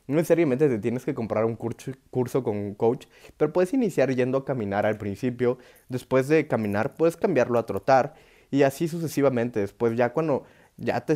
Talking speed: 185 wpm